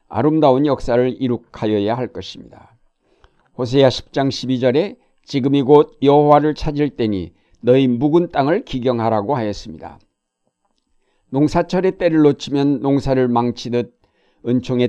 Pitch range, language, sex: 120-145 Hz, Korean, male